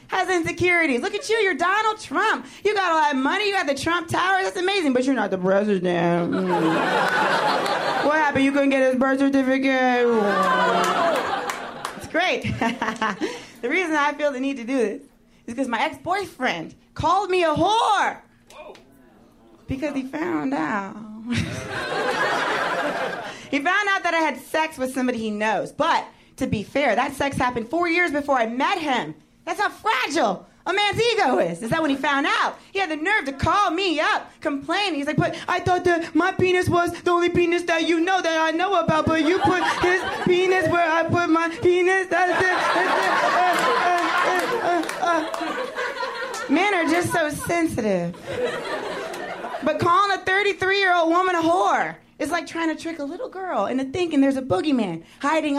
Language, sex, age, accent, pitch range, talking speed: English, female, 30-49, American, 275-365 Hz, 180 wpm